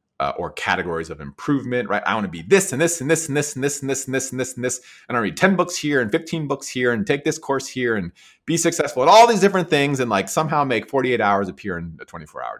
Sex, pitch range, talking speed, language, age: male, 90-140 Hz, 295 wpm, English, 30-49